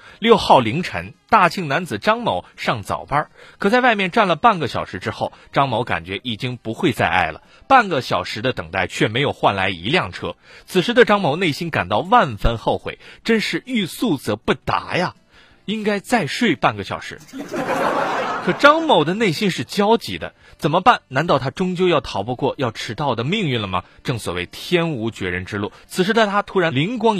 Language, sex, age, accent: Chinese, male, 30-49, native